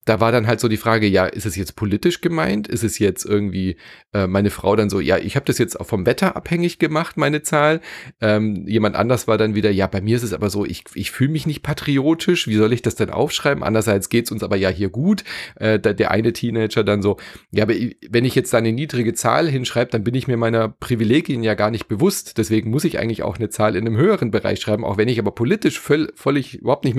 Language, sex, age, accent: German, male, 30-49, German